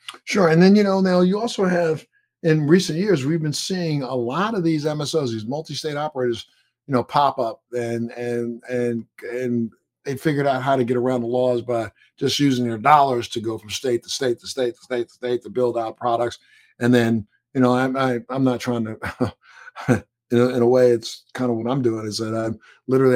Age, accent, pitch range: 50-69, American, 115-125 Hz